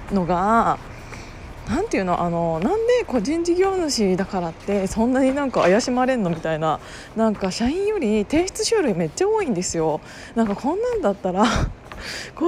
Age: 20-39